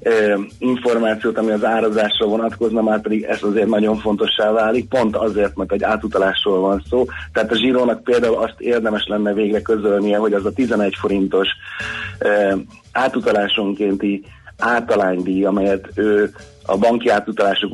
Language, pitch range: Hungarian, 100-115 Hz